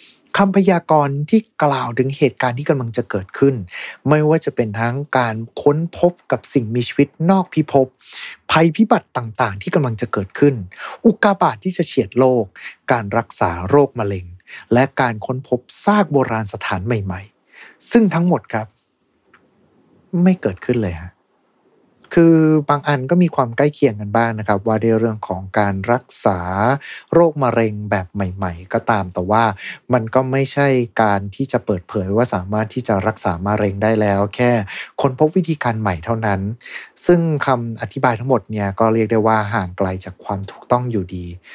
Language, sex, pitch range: Thai, male, 105-145 Hz